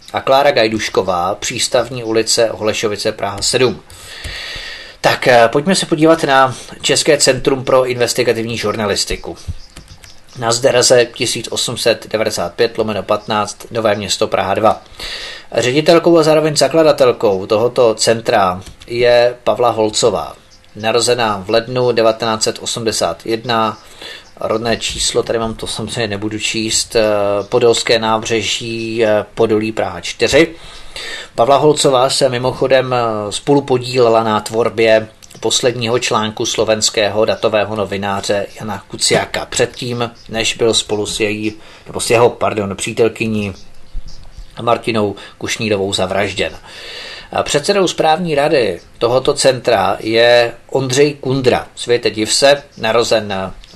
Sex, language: male, Czech